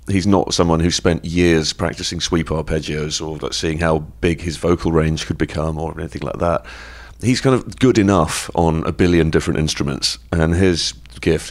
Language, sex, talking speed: English, male, 180 wpm